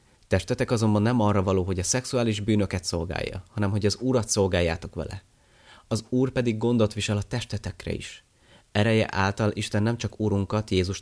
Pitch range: 95-115 Hz